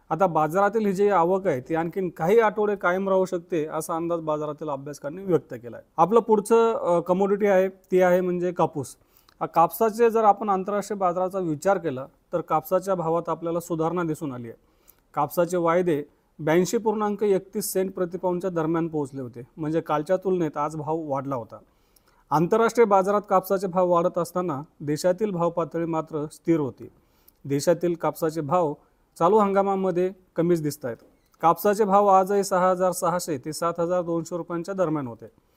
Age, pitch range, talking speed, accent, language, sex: 40-59, 160-195 Hz, 150 wpm, native, Marathi, male